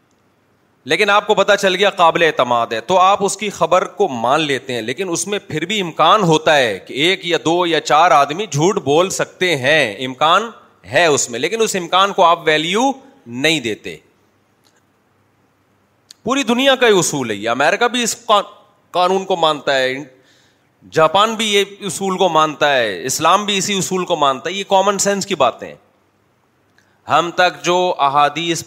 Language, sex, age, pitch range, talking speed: Urdu, male, 30-49, 140-175 Hz, 180 wpm